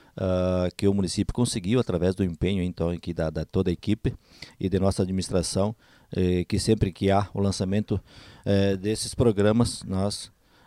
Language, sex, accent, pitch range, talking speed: Portuguese, male, Brazilian, 90-110 Hz, 170 wpm